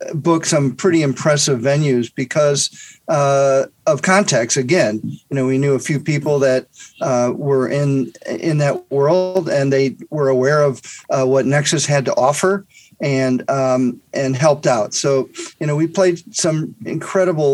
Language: English